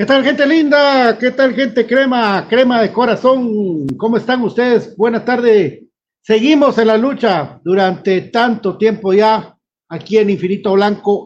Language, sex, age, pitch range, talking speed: Spanish, male, 50-69, 180-240 Hz, 150 wpm